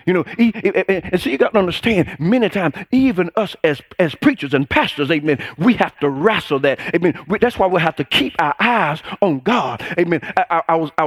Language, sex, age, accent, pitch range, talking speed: English, male, 40-59, American, 165-225 Hz, 215 wpm